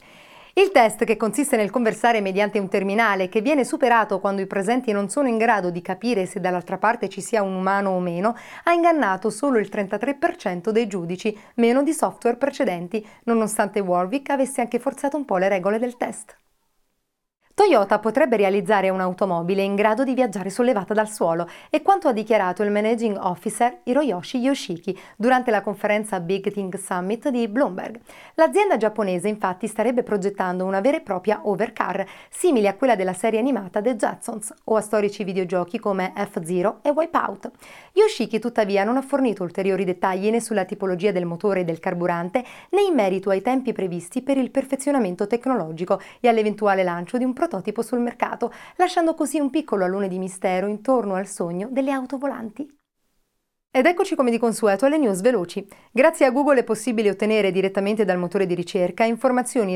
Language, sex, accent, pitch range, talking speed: Italian, female, native, 195-250 Hz, 175 wpm